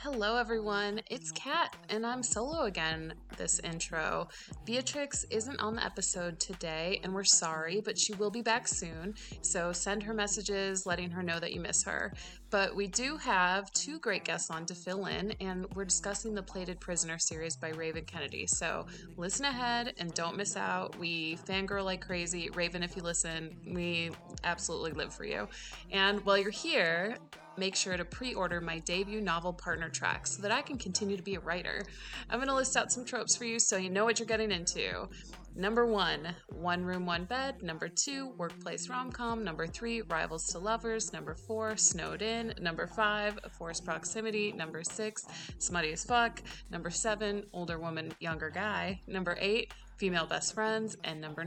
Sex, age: female, 20-39